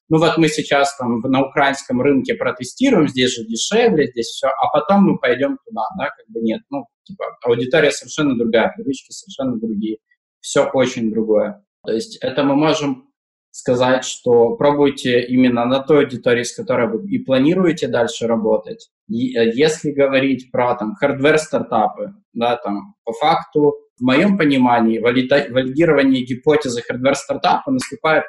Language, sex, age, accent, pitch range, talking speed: Russian, male, 20-39, native, 125-190 Hz, 150 wpm